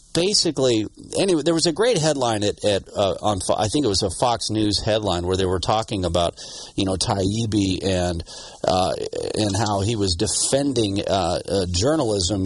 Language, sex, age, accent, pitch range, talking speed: English, male, 40-59, American, 105-155 Hz, 185 wpm